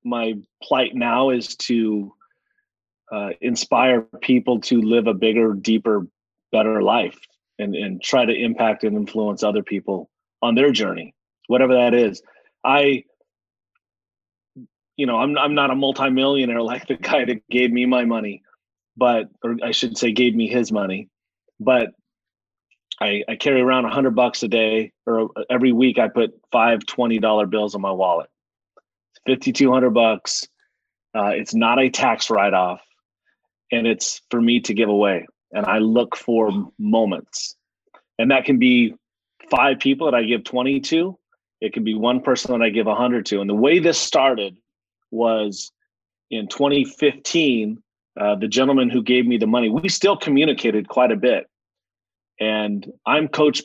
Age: 30-49